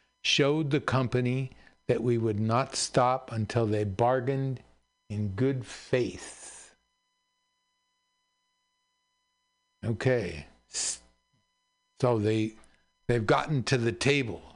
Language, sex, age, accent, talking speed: English, male, 60-79, American, 90 wpm